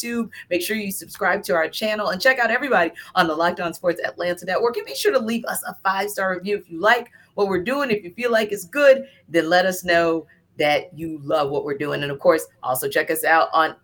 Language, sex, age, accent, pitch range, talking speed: English, female, 40-59, American, 170-225 Hz, 245 wpm